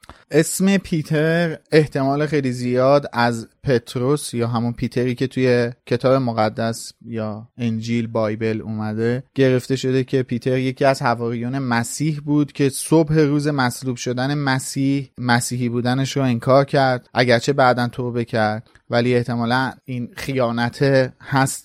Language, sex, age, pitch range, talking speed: Persian, male, 30-49, 120-145 Hz, 130 wpm